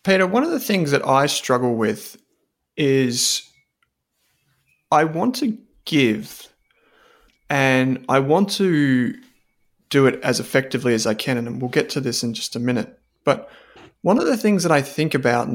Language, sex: English, male